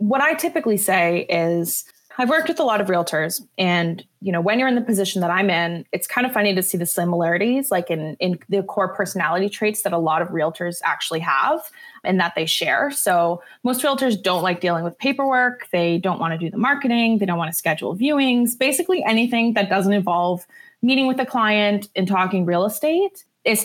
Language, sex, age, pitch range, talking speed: English, female, 20-39, 185-250 Hz, 215 wpm